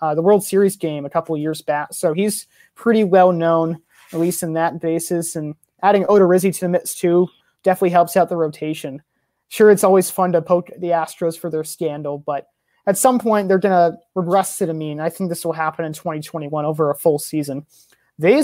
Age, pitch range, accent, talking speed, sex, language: 30-49, 160-190 Hz, American, 220 wpm, male, English